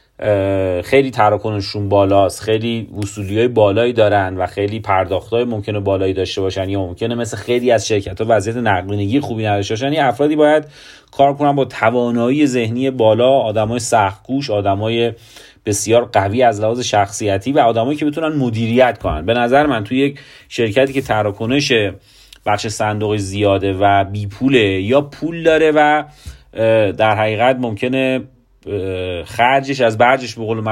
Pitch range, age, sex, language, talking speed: 105-140 Hz, 30-49, male, Persian, 145 wpm